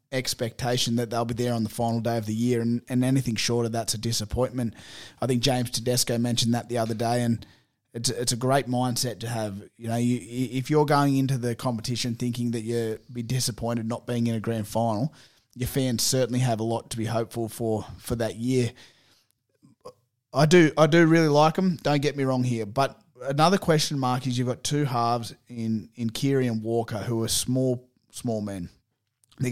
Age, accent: 20-39, Australian